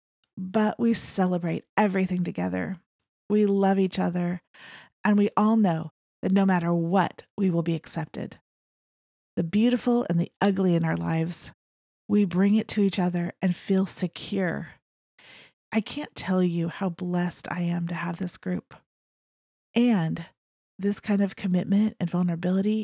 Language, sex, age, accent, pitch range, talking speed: English, female, 30-49, American, 170-205 Hz, 150 wpm